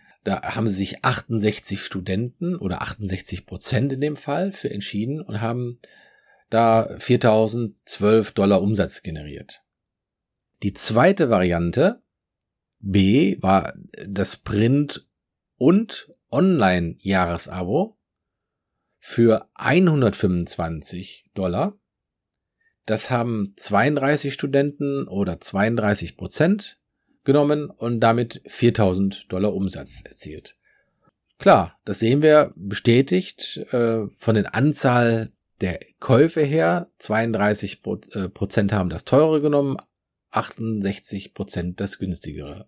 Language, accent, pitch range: German, German, 100-140 Hz